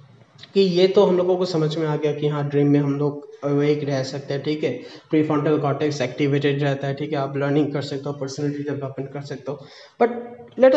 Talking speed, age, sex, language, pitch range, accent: 230 wpm, 20-39, male, Hindi, 145-185 Hz, native